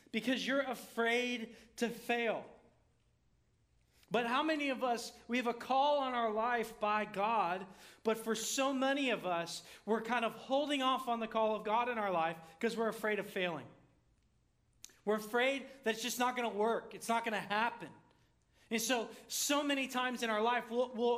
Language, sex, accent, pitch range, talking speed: English, male, American, 200-245 Hz, 190 wpm